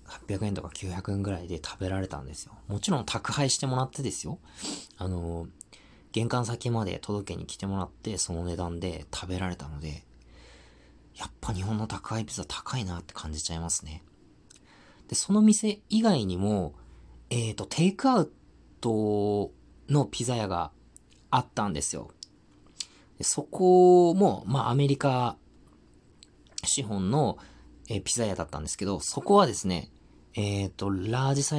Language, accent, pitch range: Japanese, native, 85-120 Hz